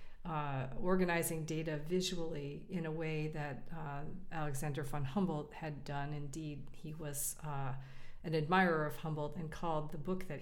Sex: female